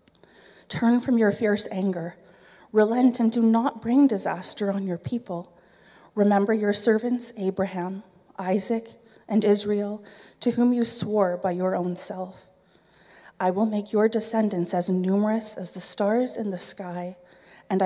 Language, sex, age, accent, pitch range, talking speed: English, female, 30-49, American, 185-220 Hz, 145 wpm